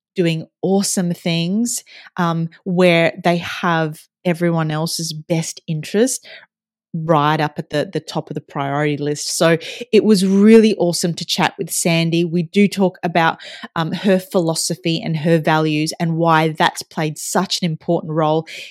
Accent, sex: Australian, female